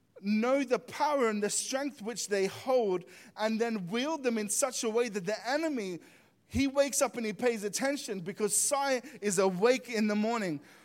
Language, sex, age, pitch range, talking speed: English, male, 20-39, 190-245 Hz, 190 wpm